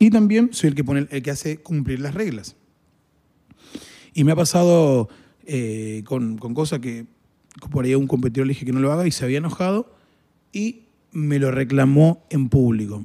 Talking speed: 180 wpm